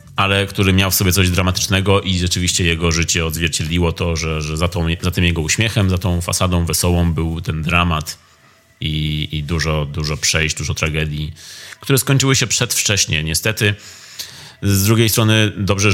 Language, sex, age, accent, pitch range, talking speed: Polish, male, 30-49, native, 80-100 Hz, 160 wpm